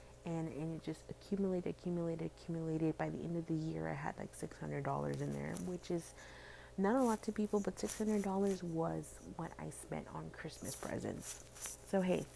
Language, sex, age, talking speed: English, female, 30-49, 180 wpm